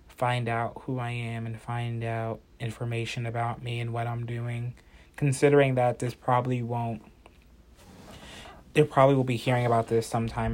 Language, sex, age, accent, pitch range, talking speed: English, male, 20-39, American, 110-125 Hz, 160 wpm